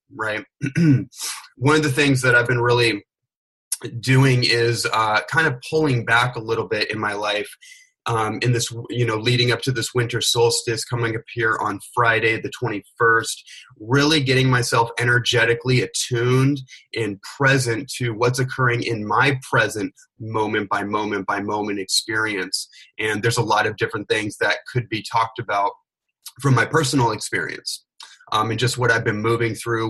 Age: 30-49